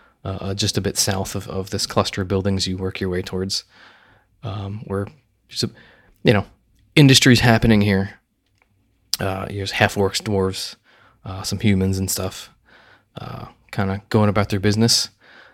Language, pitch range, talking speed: English, 95-110 Hz, 150 wpm